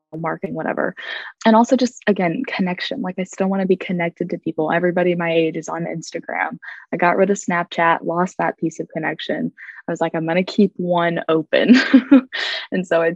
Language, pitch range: English, 170-210 Hz